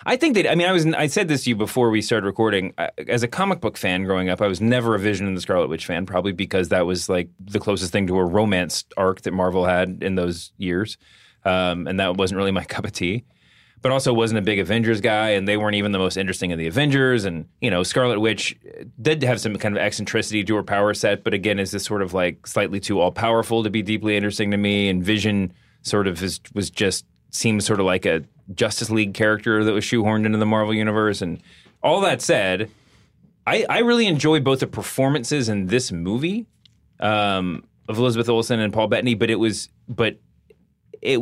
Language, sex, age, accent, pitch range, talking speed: English, male, 30-49, American, 95-115 Hz, 230 wpm